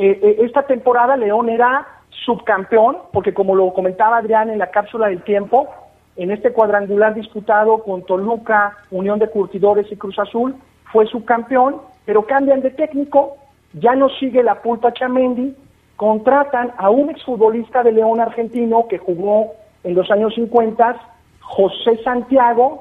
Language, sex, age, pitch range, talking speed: Spanish, male, 40-59, 210-260 Hz, 140 wpm